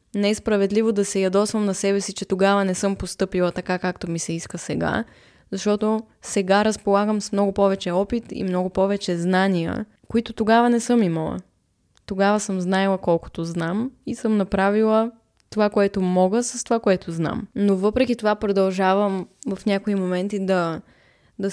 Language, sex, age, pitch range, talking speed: Bulgarian, female, 20-39, 180-220 Hz, 165 wpm